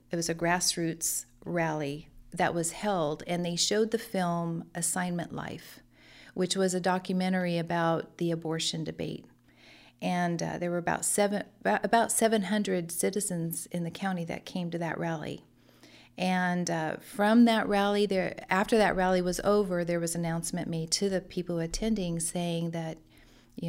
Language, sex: English, female